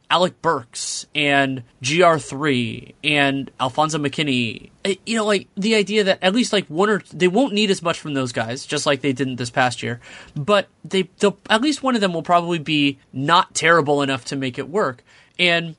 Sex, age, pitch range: male, 20-39, 140-185 Hz